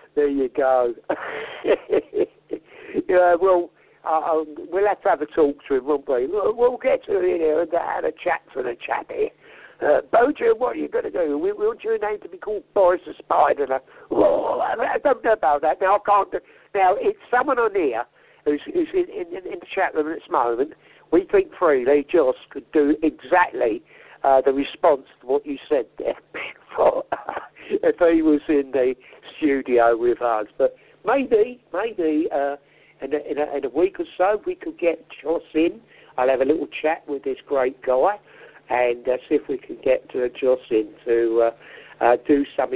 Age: 60-79